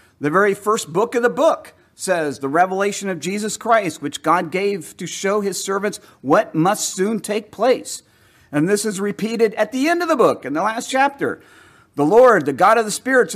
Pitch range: 170-240 Hz